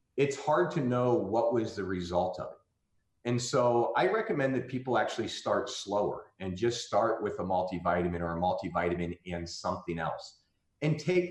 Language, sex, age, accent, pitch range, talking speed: English, male, 30-49, American, 90-135 Hz, 175 wpm